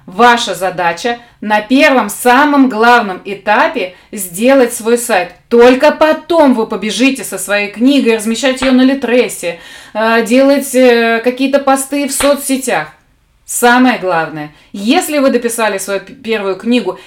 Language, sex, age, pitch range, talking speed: Russian, female, 20-39, 210-270 Hz, 120 wpm